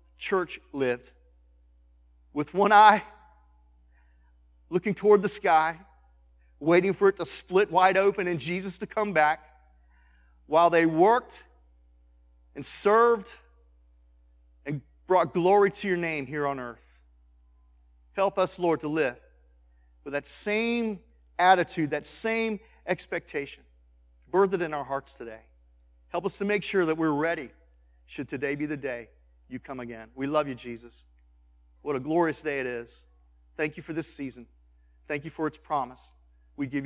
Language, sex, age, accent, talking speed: English, male, 40-59, American, 150 wpm